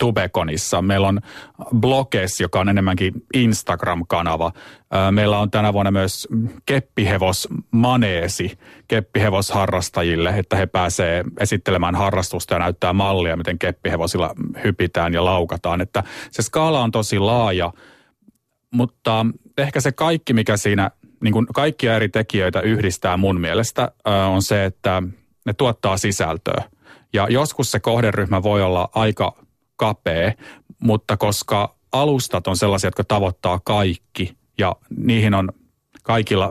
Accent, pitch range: native, 90-115 Hz